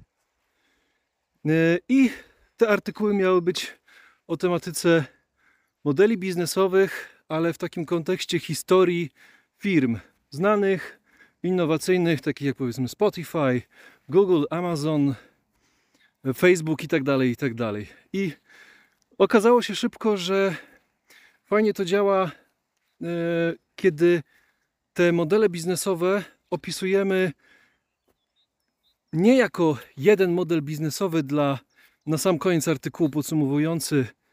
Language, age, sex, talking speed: Polish, 30-49, male, 95 wpm